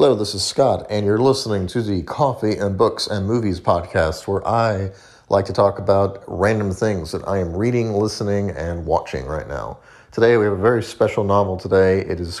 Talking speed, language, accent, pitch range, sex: 205 wpm, English, American, 95-115 Hz, male